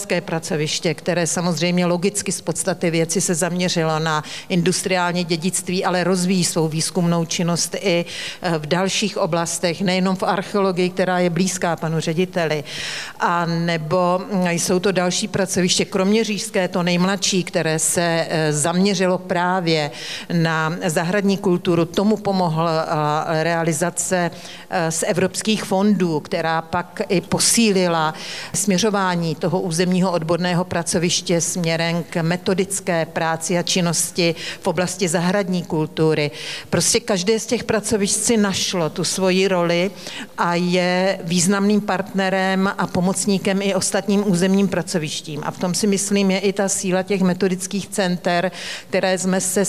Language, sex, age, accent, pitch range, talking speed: Czech, female, 50-69, native, 165-190 Hz, 125 wpm